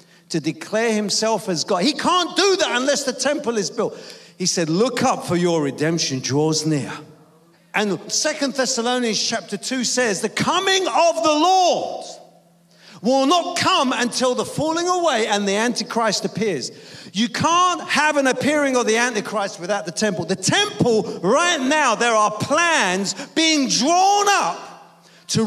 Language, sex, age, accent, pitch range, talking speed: English, male, 40-59, British, 205-290 Hz, 160 wpm